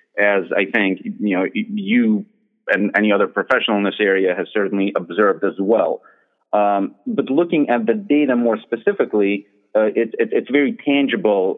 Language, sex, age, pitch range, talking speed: English, male, 40-59, 100-130 Hz, 165 wpm